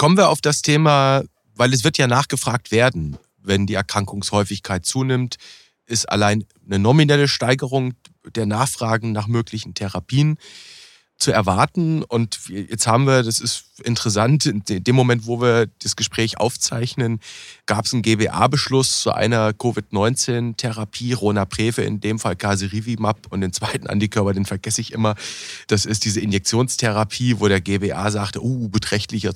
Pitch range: 100-125 Hz